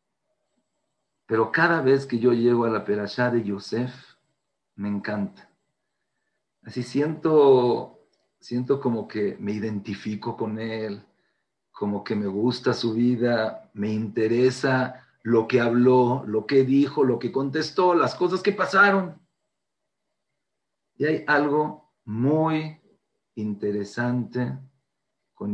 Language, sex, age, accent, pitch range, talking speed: English, male, 50-69, Mexican, 115-150 Hz, 115 wpm